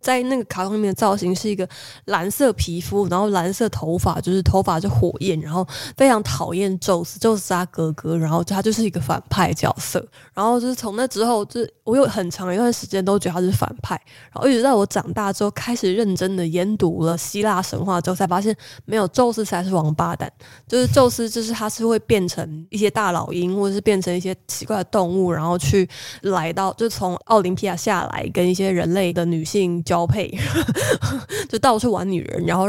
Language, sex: Chinese, female